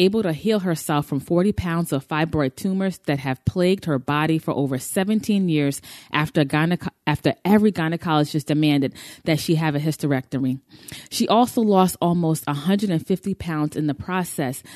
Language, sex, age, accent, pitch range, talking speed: English, female, 20-39, American, 145-185 Hz, 155 wpm